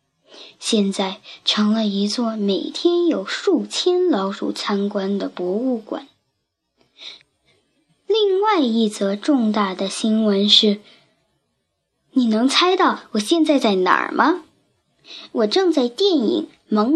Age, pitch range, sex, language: 10-29, 210-345 Hz, male, Chinese